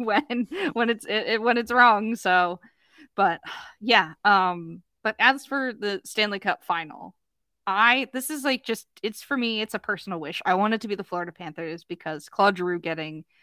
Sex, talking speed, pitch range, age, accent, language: female, 190 wpm, 170-220 Hz, 20-39, American, English